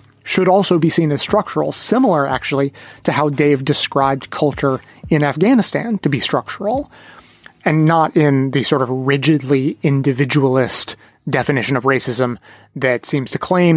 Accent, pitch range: American, 135-165 Hz